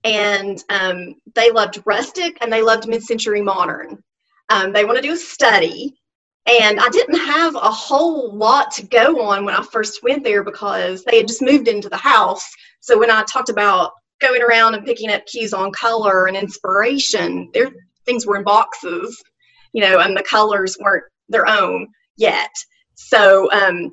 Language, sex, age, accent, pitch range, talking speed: English, female, 30-49, American, 200-240 Hz, 180 wpm